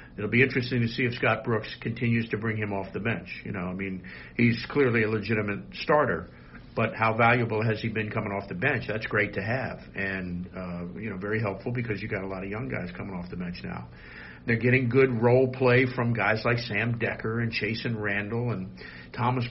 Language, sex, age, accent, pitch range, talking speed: English, male, 50-69, American, 95-120 Hz, 220 wpm